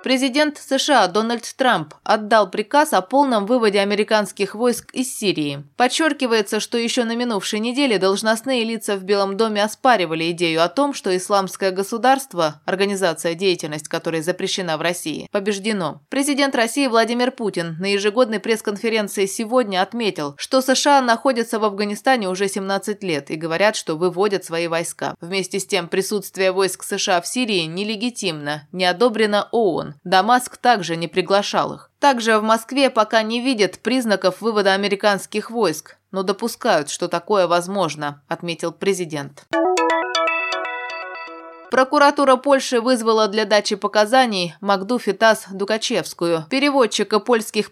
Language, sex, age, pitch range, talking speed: Russian, female, 20-39, 185-235 Hz, 135 wpm